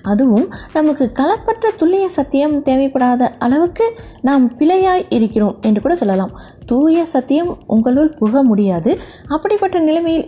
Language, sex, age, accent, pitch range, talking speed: Tamil, female, 20-39, native, 215-300 Hz, 115 wpm